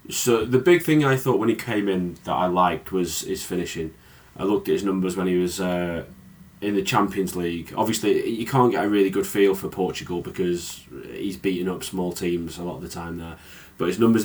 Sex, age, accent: male, 20-39, British